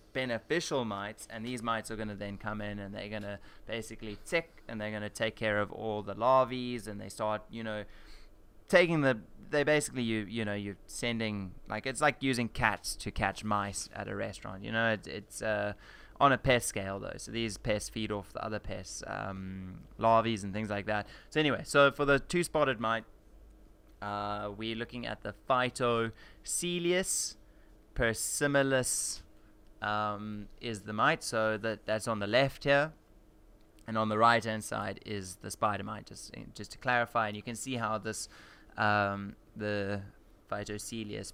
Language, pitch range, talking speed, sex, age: English, 105-120 Hz, 180 wpm, male, 20-39